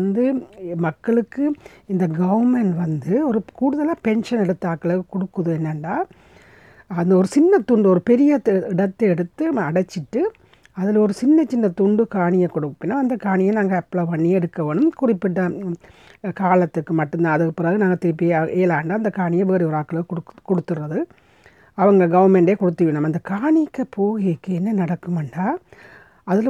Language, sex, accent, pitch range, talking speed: Tamil, female, native, 175-240 Hz, 125 wpm